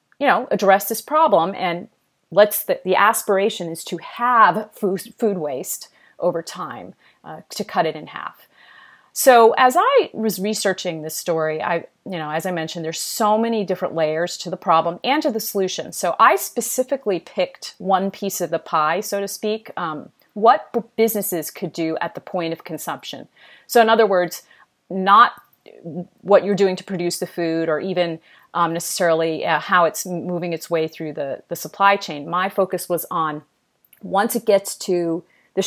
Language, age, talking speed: English, 40-59, 180 wpm